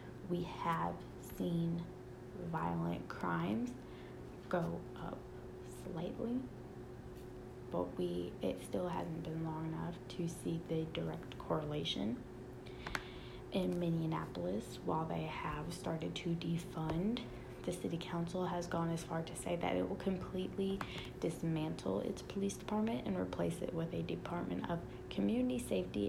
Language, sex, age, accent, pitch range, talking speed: English, female, 20-39, American, 125-185 Hz, 125 wpm